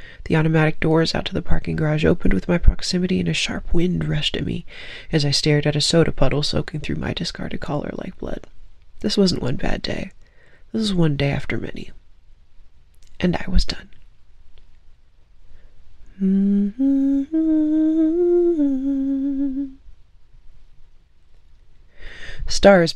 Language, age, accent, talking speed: English, 20-39, American, 135 wpm